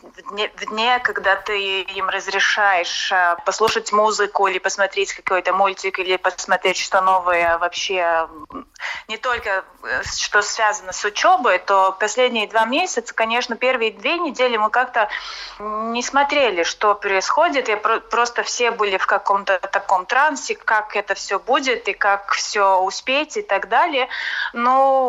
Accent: native